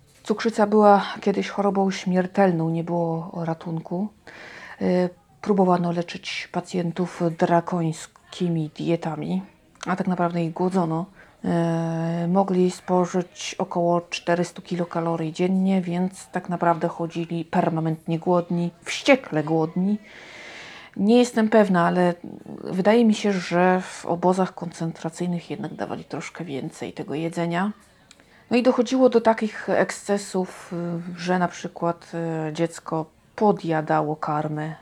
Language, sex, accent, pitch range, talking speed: Polish, female, native, 170-195 Hz, 105 wpm